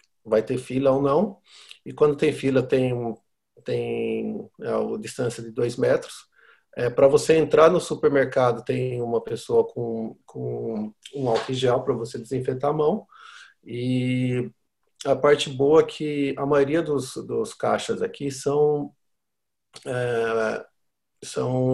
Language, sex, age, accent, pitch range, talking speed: Portuguese, male, 50-69, Brazilian, 120-145 Hz, 135 wpm